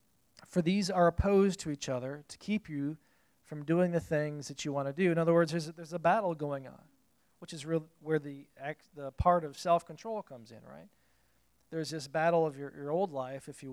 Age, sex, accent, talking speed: 40-59, male, American, 215 wpm